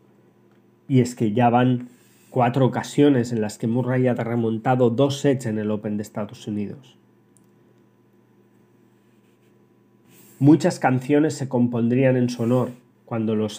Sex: male